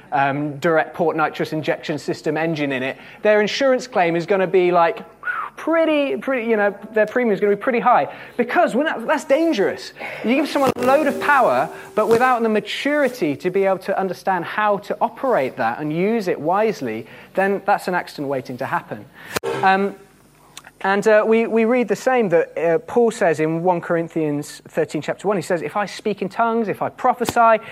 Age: 20-39